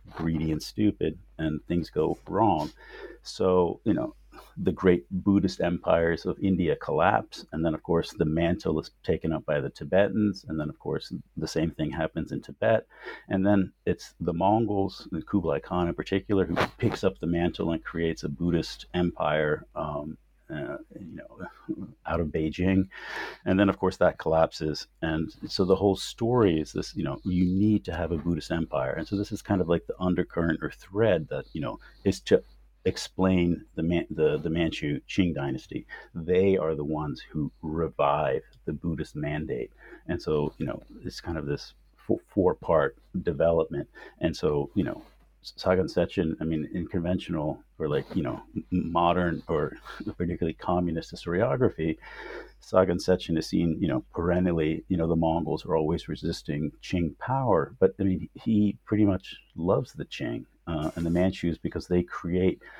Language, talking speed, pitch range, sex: English, 175 wpm, 80-95 Hz, male